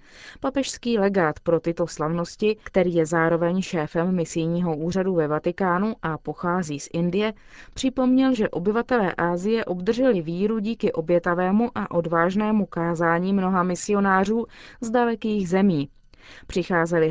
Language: Czech